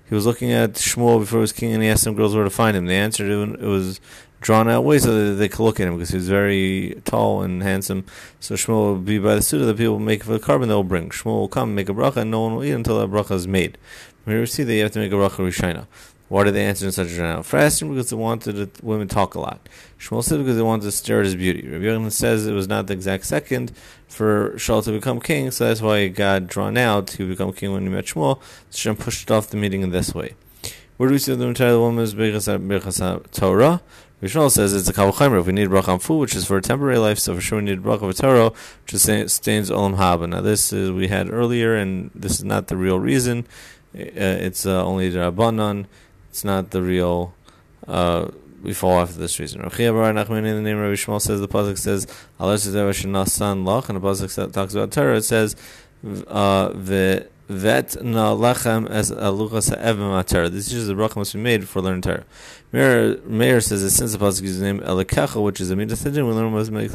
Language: English